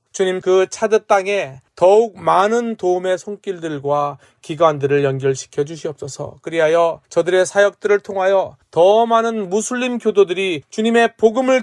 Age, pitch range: 30-49, 140-195 Hz